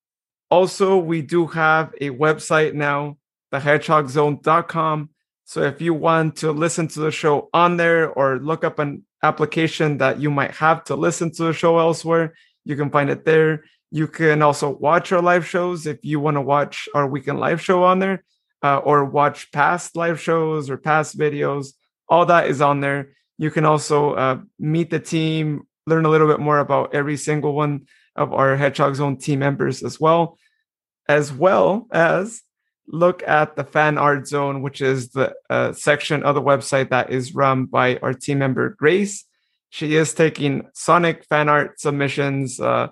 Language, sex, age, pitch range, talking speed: English, male, 30-49, 140-165 Hz, 180 wpm